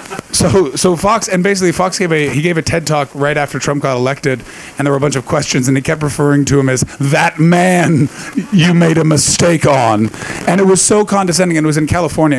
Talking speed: 235 wpm